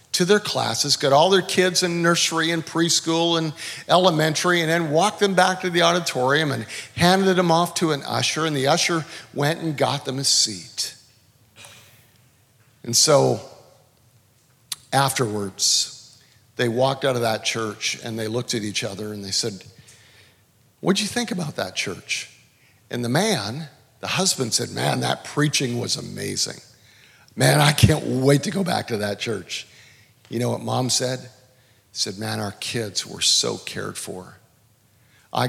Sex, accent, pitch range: male, American, 115-160 Hz